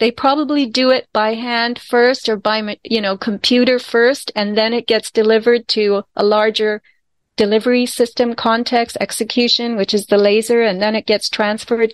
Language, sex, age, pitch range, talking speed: English, female, 40-59, 210-255 Hz, 170 wpm